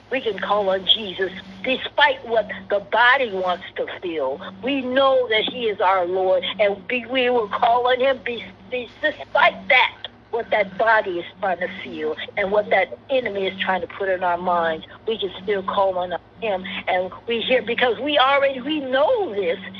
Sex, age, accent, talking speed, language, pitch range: female, 60-79, American, 180 wpm, English, 195-275 Hz